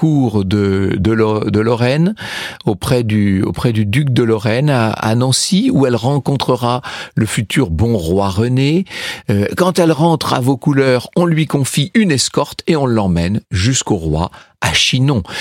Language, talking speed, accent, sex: French, 160 wpm, French, male